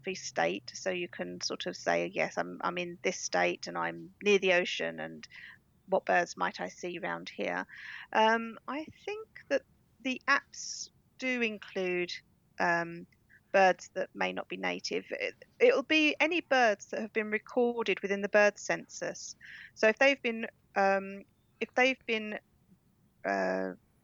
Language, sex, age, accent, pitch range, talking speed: English, female, 40-59, British, 175-210 Hz, 155 wpm